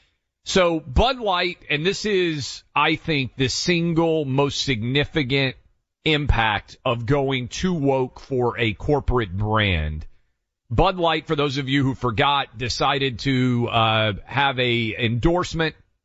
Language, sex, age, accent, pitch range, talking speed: English, male, 40-59, American, 120-160 Hz, 130 wpm